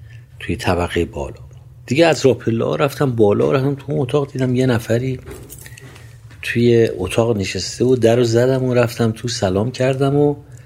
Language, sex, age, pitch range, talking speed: Persian, male, 50-69, 110-130 Hz, 160 wpm